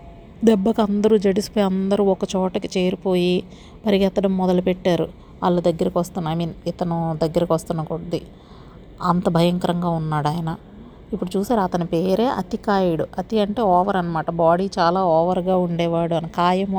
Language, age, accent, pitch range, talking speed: Telugu, 30-49, native, 180-220 Hz, 135 wpm